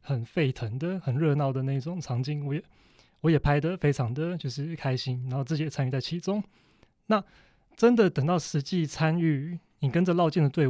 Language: Chinese